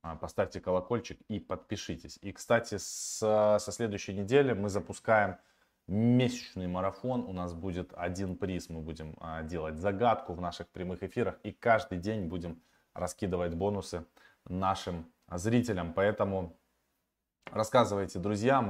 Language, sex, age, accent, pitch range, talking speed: Russian, male, 20-39, native, 90-115 Hz, 120 wpm